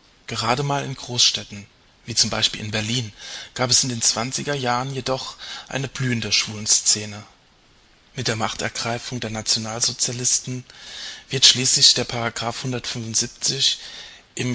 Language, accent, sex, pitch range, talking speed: German, German, male, 115-130 Hz, 125 wpm